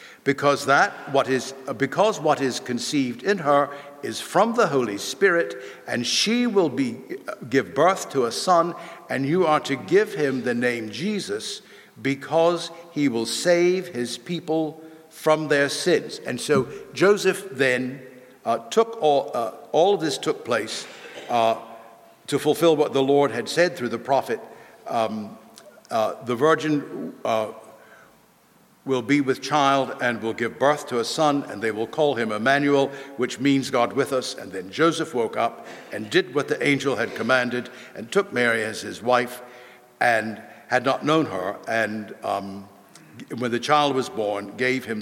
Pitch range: 125-165 Hz